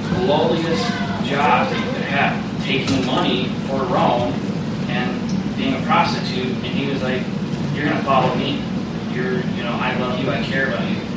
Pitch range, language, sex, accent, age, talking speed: 190-210 Hz, English, male, American, 30-49, 175 wpm